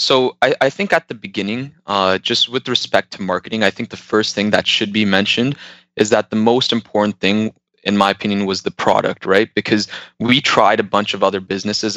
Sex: male